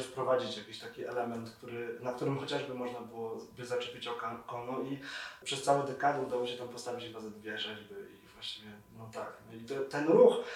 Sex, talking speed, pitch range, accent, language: male, 165 wpm, 125-175 Hz, native, Polish